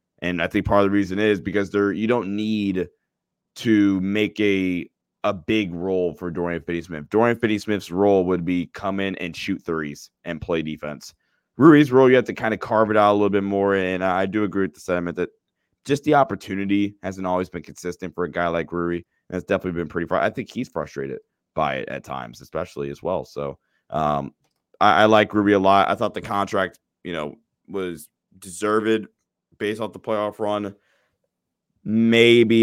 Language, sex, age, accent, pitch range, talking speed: English, male, 20-39, American, 85-105 Hz, 200 wpm